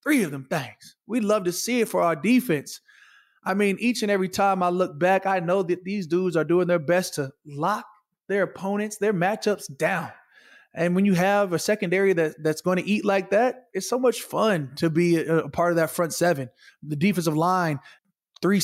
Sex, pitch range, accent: male, 160-195 Hz, American